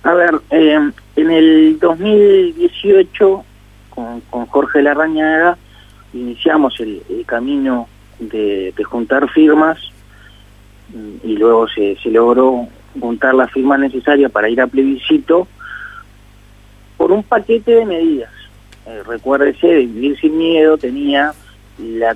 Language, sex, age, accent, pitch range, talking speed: Spanish, male, 40-59, Argentinian, 115-170 Hz, 115 wpm